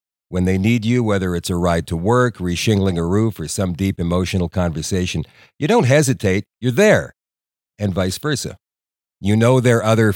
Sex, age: male, 50-69